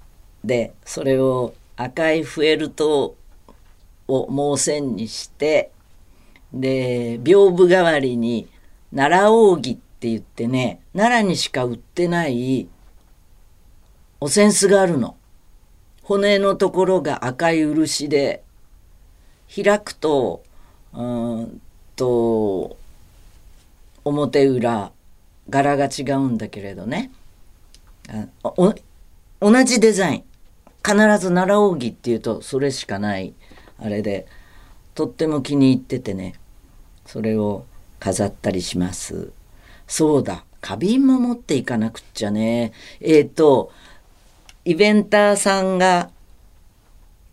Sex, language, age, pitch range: female, Japanese, 50-69, 100-160 Hz